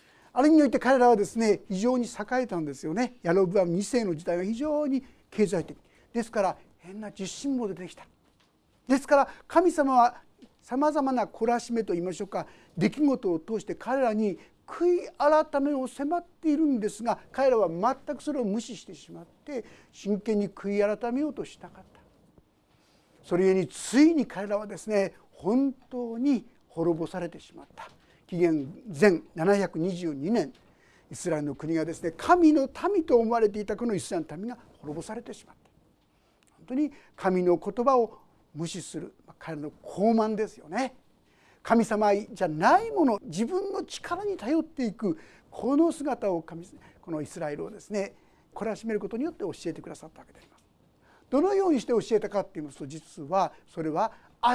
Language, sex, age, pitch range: Japanese, male, 50-69, 180-270 Hz